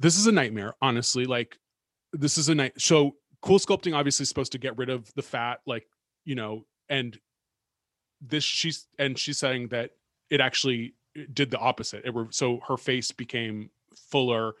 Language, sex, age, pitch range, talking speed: English, male, 20-39, 120-150 Hz, 175 wpm